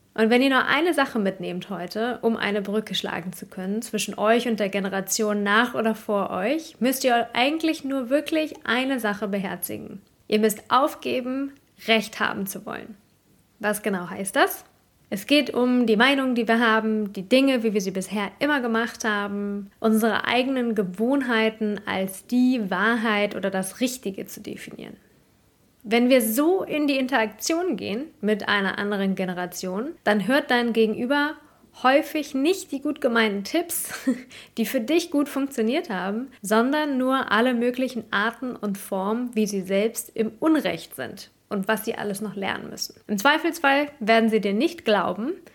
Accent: German